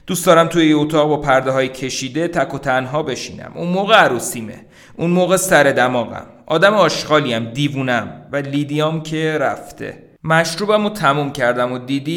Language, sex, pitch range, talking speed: Persian, male, 120-160 Hz, 165 wpm